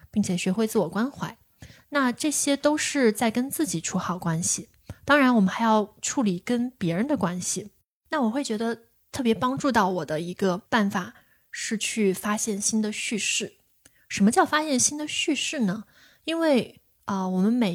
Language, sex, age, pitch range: Chinese, female, 20-39, 190-240 Hz